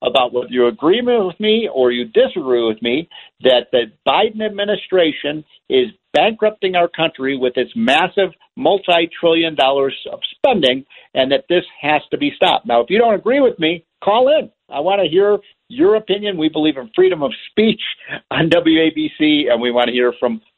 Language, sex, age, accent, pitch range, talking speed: English, male, 50-69, American, 145-205 Hz, 180 wpm